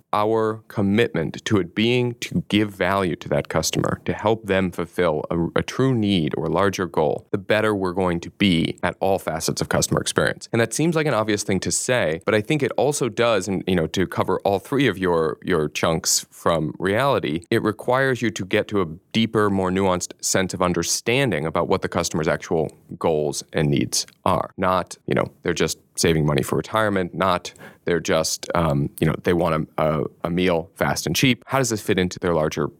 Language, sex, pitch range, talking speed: English, male, 85-110 Hz, 210 wpm